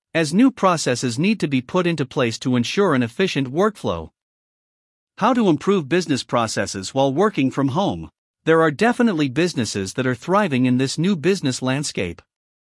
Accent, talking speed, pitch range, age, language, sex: American, 165 wpm, 130-190 Hz, 50-69, English, male